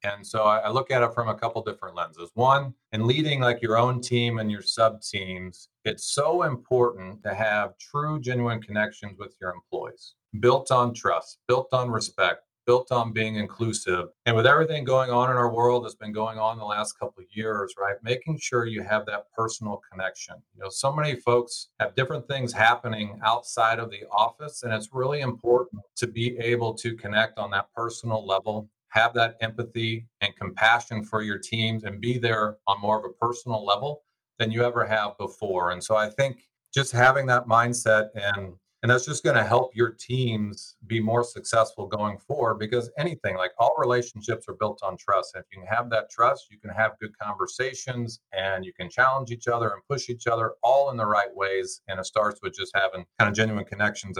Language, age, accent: English, 40-59, American